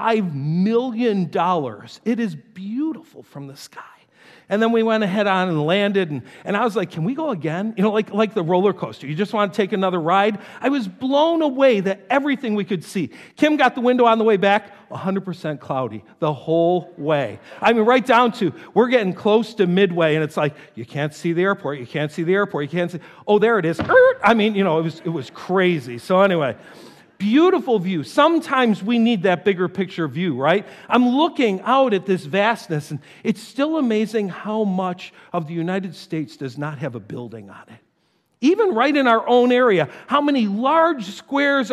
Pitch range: 170-235 Hz